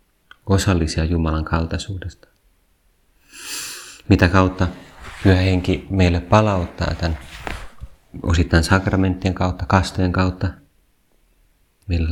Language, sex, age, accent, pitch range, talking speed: Finnish, male, 30-49, native, 80-95 Hz, 80 wpm